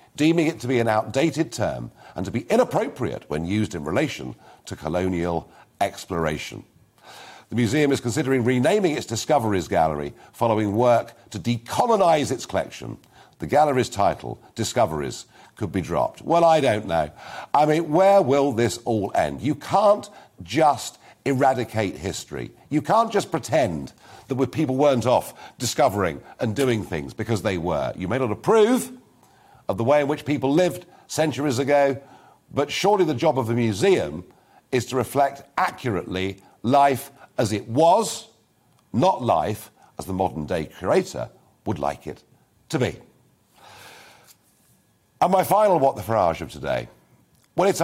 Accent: British